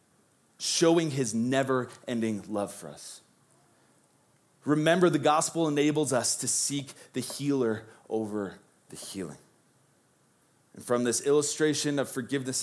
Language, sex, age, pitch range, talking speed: English, male, 30-49, 100-135 Hz, 115 wpm